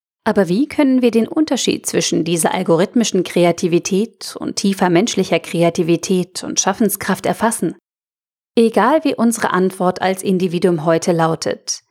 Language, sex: German, female